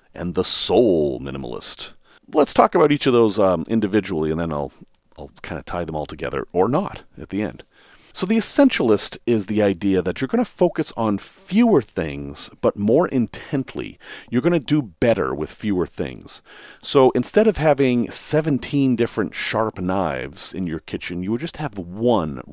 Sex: male